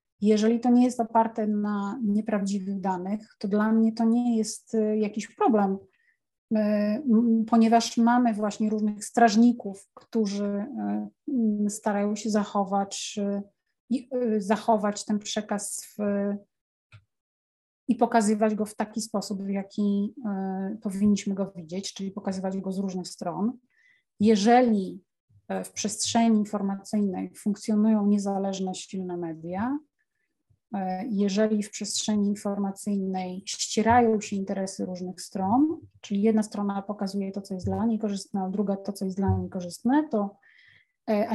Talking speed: 120 wpm